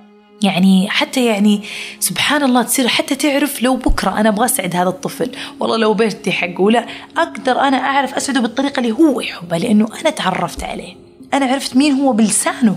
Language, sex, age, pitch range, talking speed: Arabic, female, 20-39, 185-260 Hz, 175 wpm